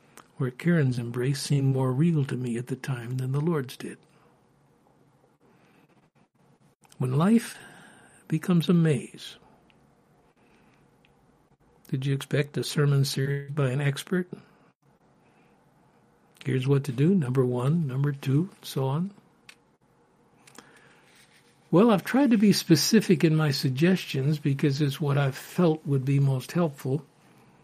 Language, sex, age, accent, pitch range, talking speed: English, male, 60-79, American, 135-160 Hz, 125 wpm